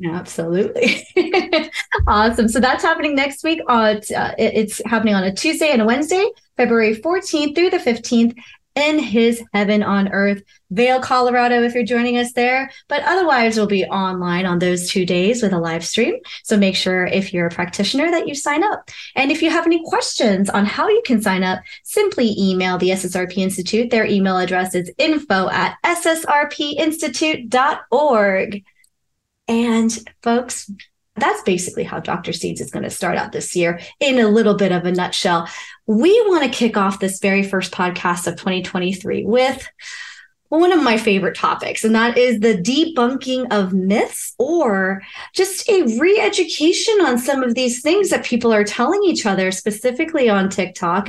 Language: English